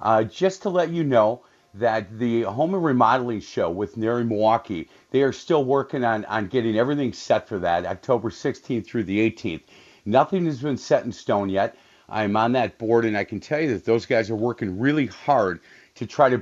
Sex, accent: male, American